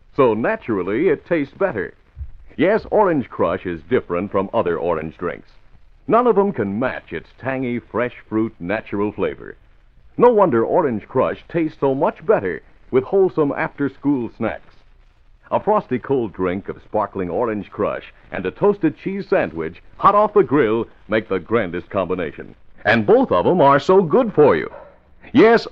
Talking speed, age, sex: 160 wpm, 60-79, male